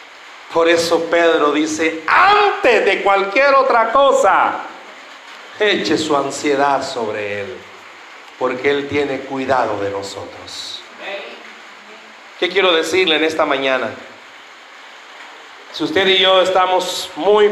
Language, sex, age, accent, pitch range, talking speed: Spanish, male, 40-59, Mexican, 140-205 Hz, 110 wpm